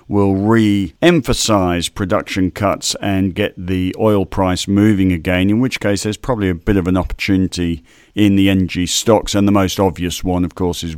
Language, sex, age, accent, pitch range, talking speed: English, male, 50-69, British, 90-110 Hz, 180 wpm